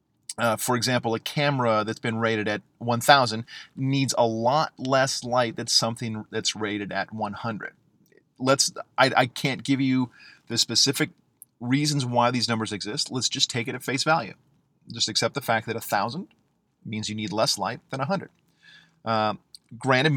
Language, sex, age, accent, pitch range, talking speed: English, male, 30-49, American, 110-135 Hz, 165 wpm